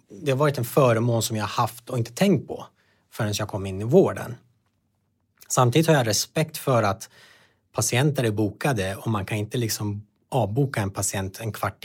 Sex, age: male, 30-49